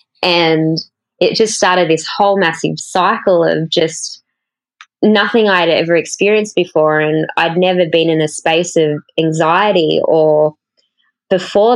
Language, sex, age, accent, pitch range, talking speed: English, female, 10-29, Australian, 160-185 Hz, 135 wpm